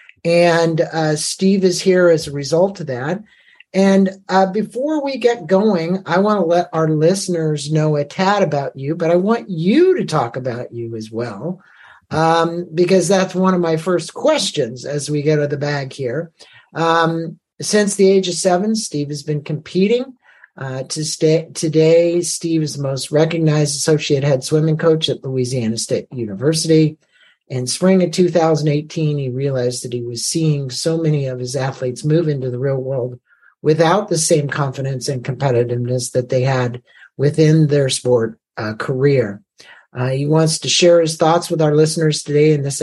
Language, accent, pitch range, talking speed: English, American, 140-175 Hz, 180 wpm